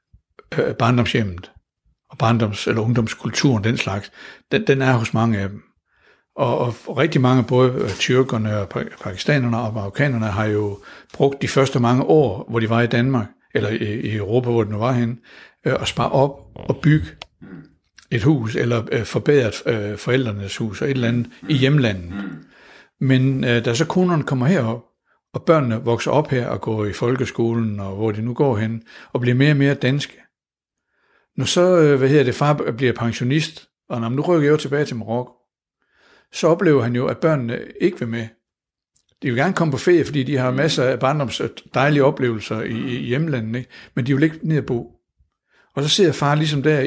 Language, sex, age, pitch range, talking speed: Danish, male, 60-79, 115-145 Hz, 185 wpm